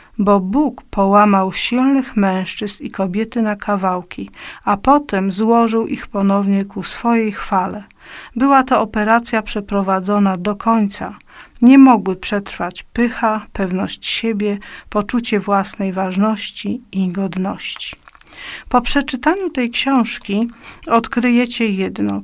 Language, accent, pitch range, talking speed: Polish, native, 195-235 Hz, 110 wpm